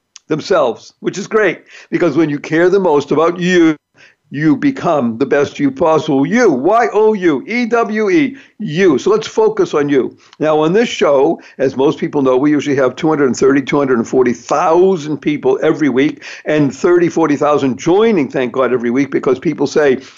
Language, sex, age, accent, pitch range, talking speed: English, male, 60-79, American, 140-200 Hz, 160 wpm